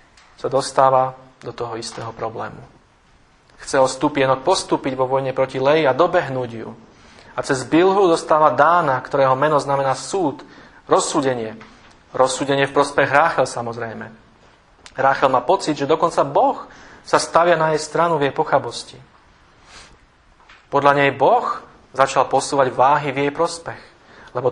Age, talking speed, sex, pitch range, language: 40-59, 135 wpm, male, 130-155 Hz, Slovak